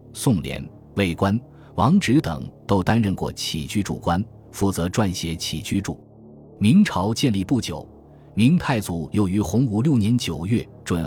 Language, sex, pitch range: Chinese, male, 90-115 Hz